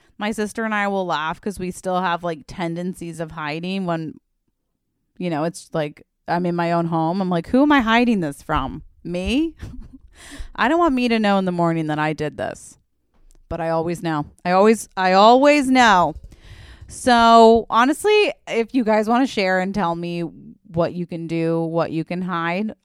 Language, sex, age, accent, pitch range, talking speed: English, female, 30-49, American, 170-225 Hz, 195 wpm